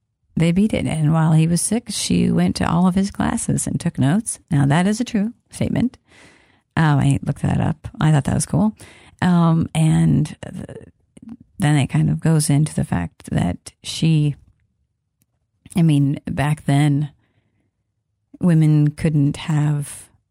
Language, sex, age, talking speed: English, female, 40-59, 160 wpm